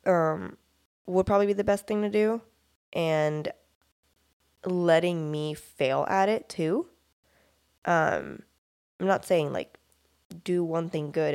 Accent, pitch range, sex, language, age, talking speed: American, 145-185 Hz, female, English, 20-39, 130 wpm